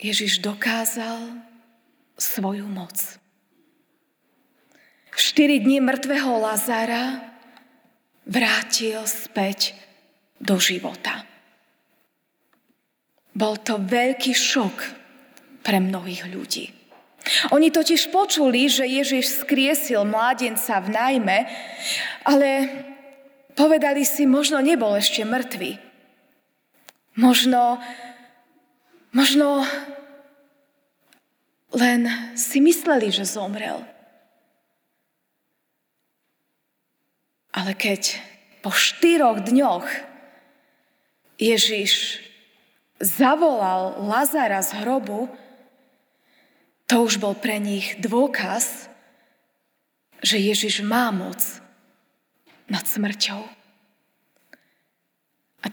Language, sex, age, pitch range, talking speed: Slovak, female, 20-39, 215-275 Hz, 70 wpm